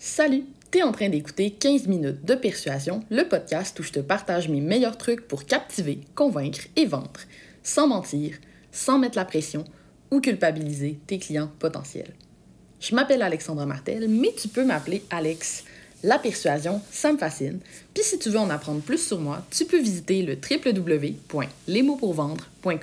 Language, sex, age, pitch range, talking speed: French, female, 20-39, 155-235 Hz, 165 wpm